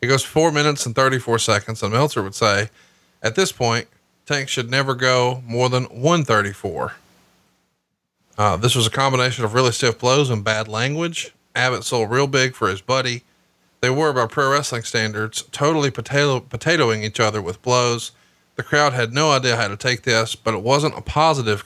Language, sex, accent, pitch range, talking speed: English, male, American, 115-150 Hz, 185 wpm